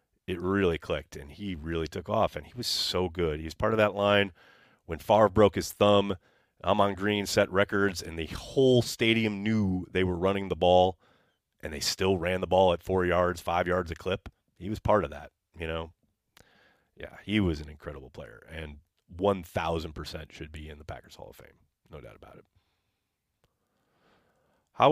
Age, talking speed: 30-49, 190 wpm